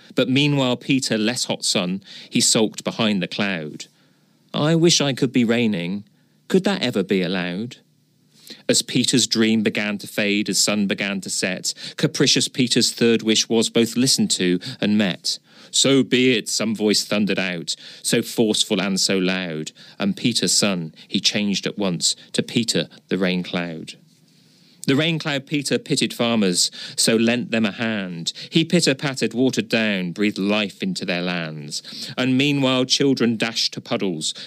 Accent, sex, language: British, male, English